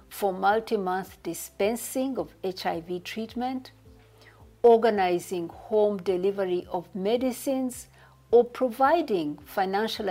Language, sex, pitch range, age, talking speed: English, female, 165-225 Hz, 50-69, 85 wpm